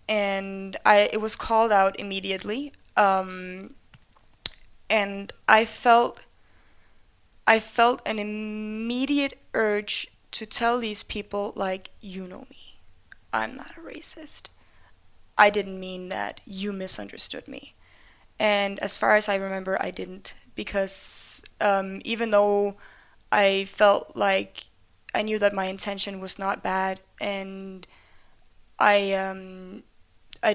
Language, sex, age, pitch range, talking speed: Danish, female, 20-39, 195-215 Hz, 120 wpm